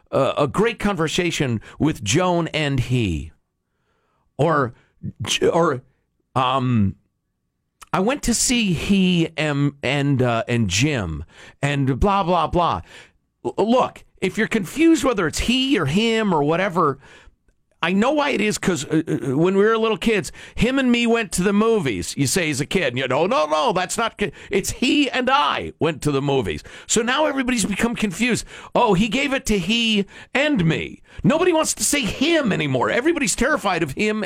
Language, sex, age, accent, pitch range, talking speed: English, male, 50-69, American, 155-235 Hz, 175 wpm